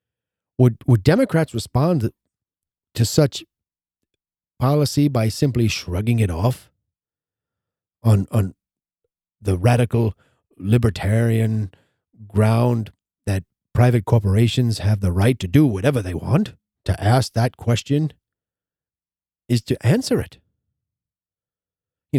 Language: English